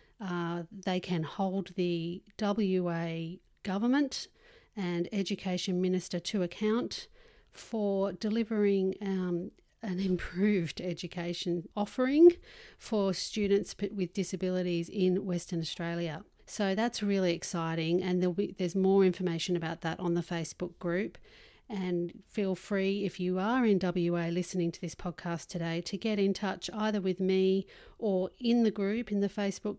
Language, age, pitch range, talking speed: English, 40-59, 175-205 Hz, 135 wpm